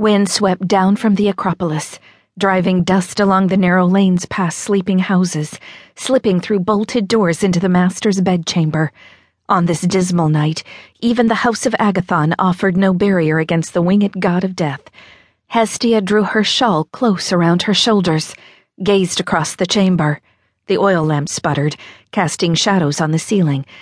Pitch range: 155-200 Hz